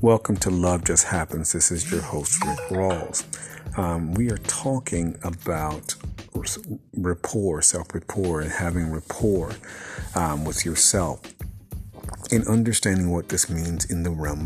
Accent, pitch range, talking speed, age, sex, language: American, 80-100 Hz, 135 wpm, 50-69, male, English